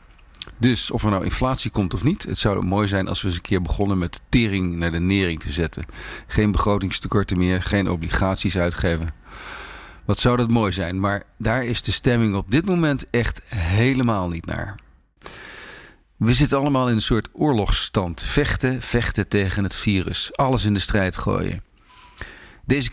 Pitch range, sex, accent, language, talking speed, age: 95-120 Hz, male, Dutch, Dutch, 175 wpm, 50-69